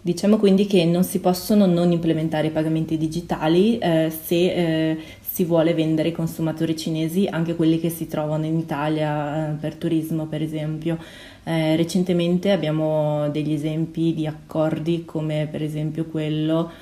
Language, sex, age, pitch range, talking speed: Italian, female, 20-39, 155-165 Hz, 155 wpm